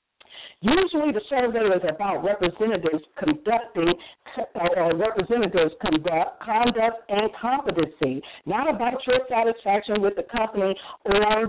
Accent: American